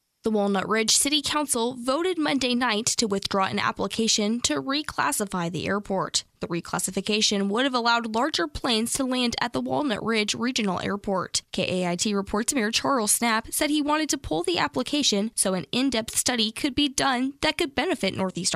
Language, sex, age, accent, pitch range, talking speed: English, female, 10-29, American, 195-255 Hz, 175 wpm